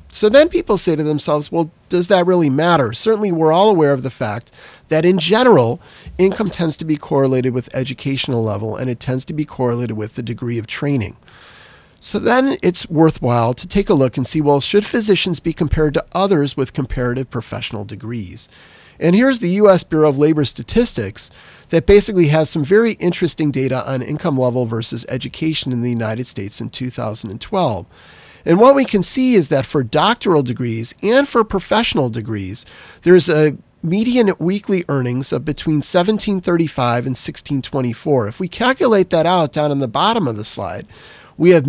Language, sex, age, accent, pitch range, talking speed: English, male, 40-59, American, 125-180 Hz, 180 wpm